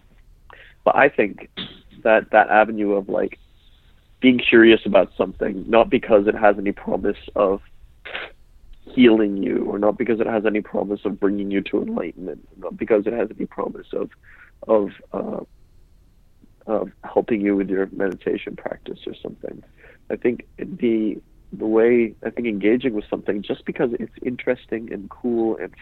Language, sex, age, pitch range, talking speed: English, male, 40-59, 90-110 Hz, 155 wpm